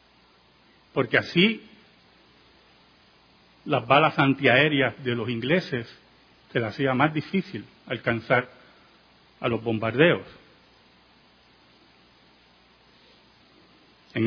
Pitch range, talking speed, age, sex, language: 110-160 Hz, 75 wpm, 40-59, male, Spanish